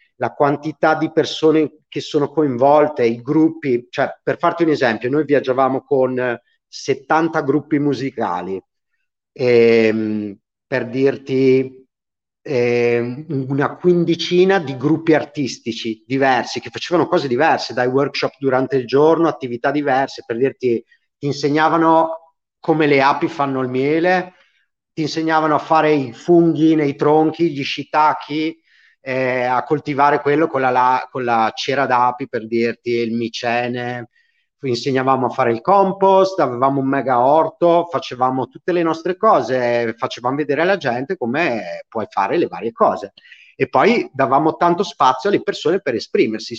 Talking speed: 135 wpm